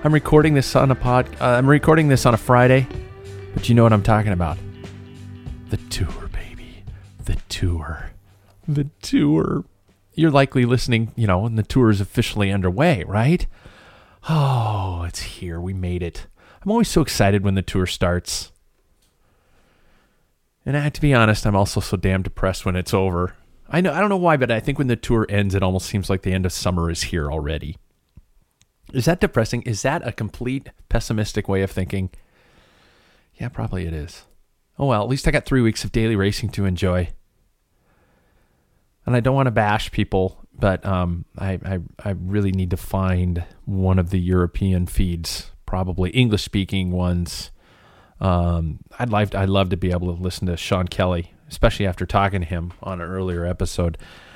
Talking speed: 180 wpm